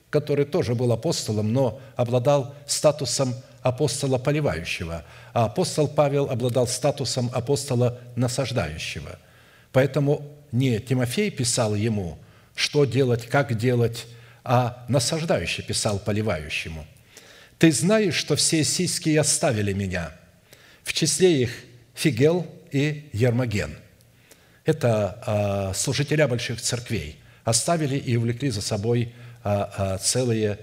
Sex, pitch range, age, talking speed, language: male, 115-150 Hz, 50-69, 105 wpm, Russian